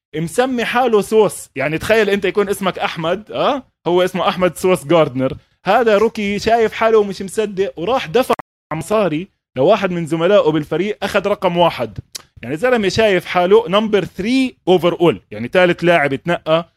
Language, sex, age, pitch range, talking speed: Arabic, male, 20-39, 150-205 Hz, 160 wpm